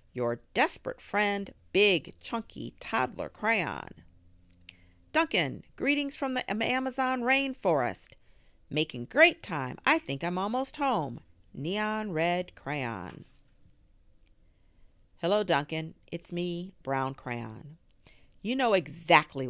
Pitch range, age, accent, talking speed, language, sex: 125-200 Hz, 40-59, American, 100 wpm, English, female